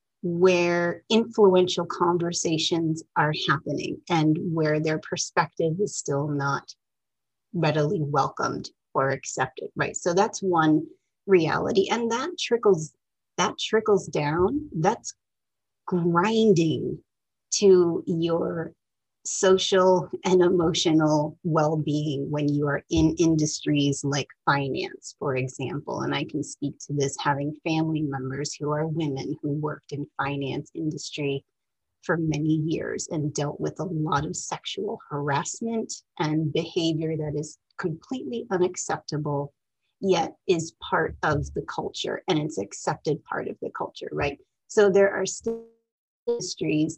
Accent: American